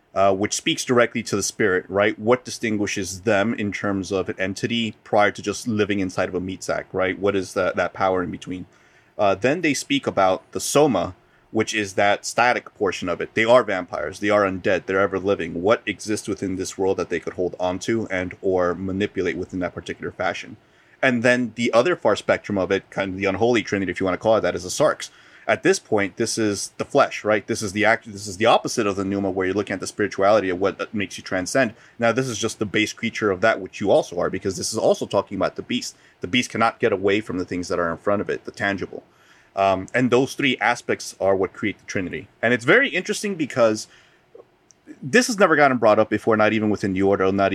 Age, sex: 30-49, male